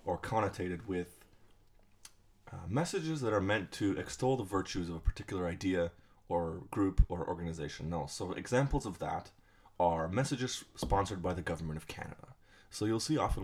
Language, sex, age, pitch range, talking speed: English, male, 20-39, 85-105 Hz, 165 wpm